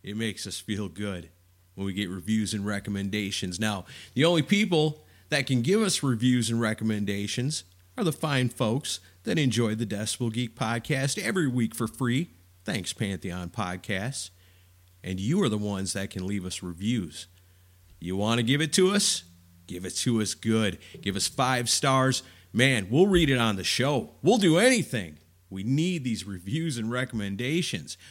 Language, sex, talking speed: English, male, 175 wpm